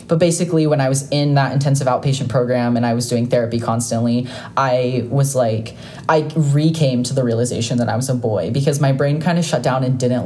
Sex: female